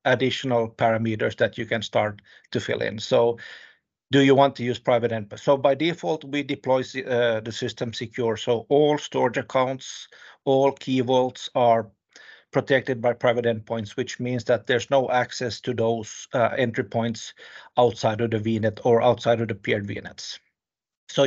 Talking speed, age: 170 wpm, 50-69